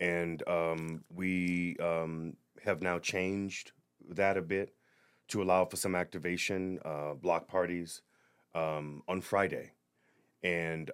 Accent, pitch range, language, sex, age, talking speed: American, 75-95 Hz, English, male, 30-49, 120 wpm